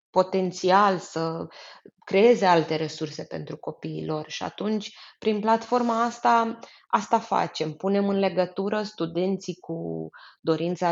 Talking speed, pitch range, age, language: 110 wpm, 165-210 Hz, 20-39, Romanian